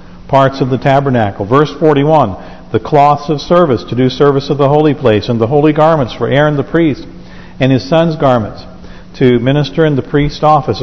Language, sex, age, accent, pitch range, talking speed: English, male, 50-69, American, 105-140 Hz, 195 wpm